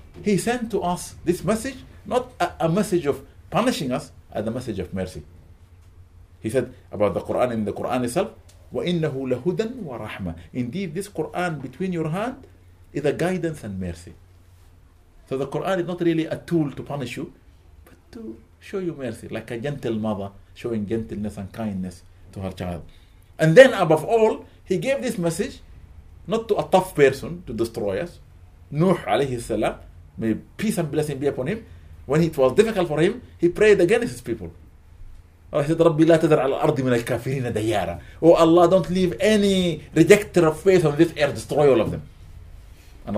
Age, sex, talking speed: 50-69, male, 170 wpm